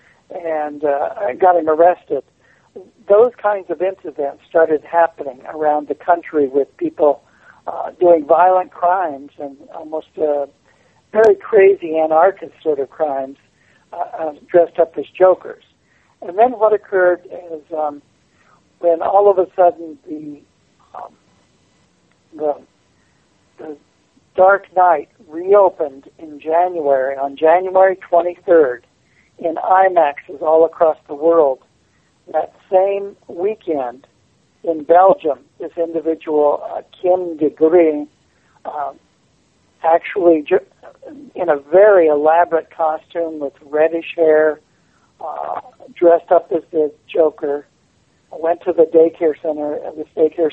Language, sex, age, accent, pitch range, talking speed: English, male, 60-79, American, 150-180 Hz, 115 wpm